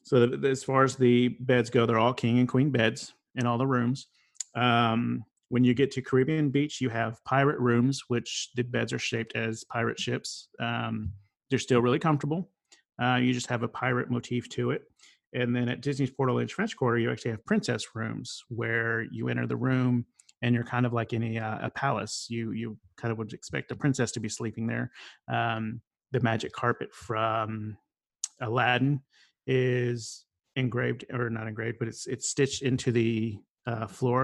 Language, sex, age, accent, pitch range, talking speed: English, male, 30-49, American, 115-130 Hz, 190 wpm